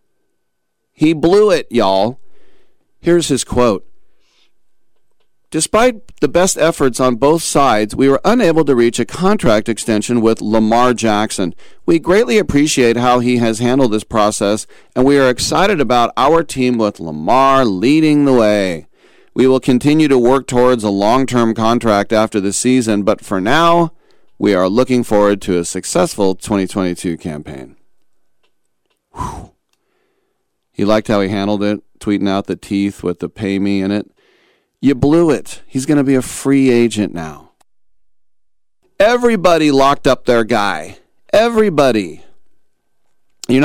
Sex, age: male, 40-59